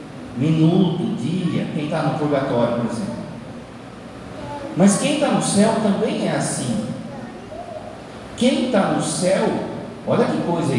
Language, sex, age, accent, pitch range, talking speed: Portuguese, male, 40-59, Brazilian, 140-205 Hz, 130 wpm